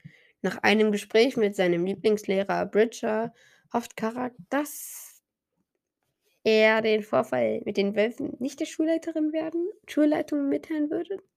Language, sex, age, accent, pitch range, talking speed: German, female, 20-39, German, 185-235 Hz, 120 wpm